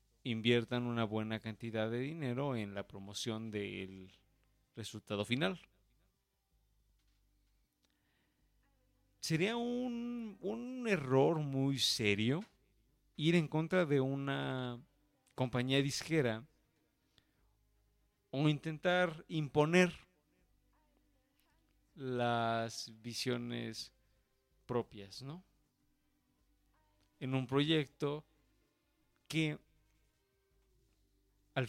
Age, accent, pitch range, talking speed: 50-69, Mexican, 110-145 Hz, 70 wpm